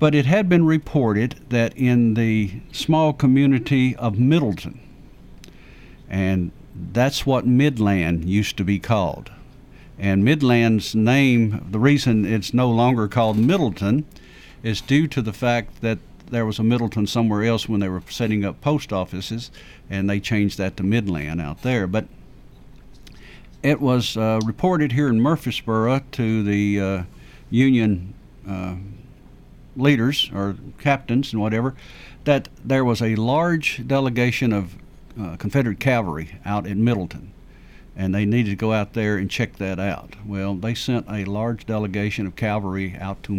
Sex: male